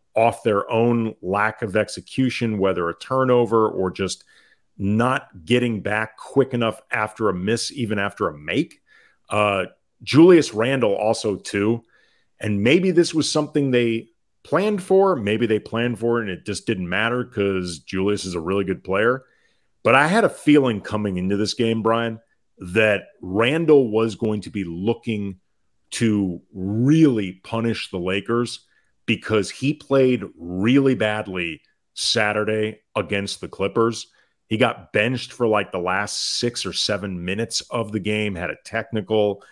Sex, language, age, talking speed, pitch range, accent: male, English, 40-59, 155 wpm, 100-120 Hz, American